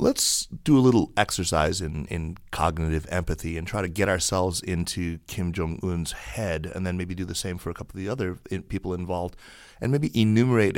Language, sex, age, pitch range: English, male, 30-49, 85-95 Hz